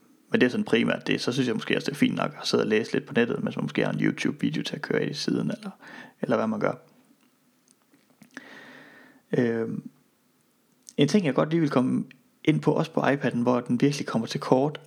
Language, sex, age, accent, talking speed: Danish, male, 30-49, native, 235 wpm